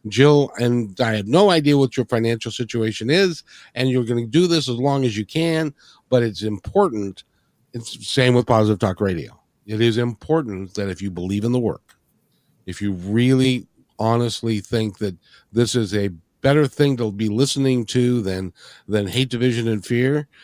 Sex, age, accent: male, 50-69, American